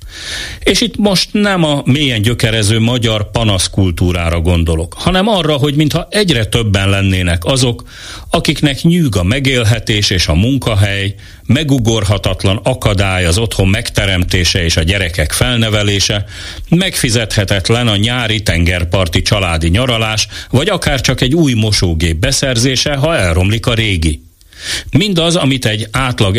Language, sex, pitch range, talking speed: Hungarian, male, 95-135 Hz, 125 wpm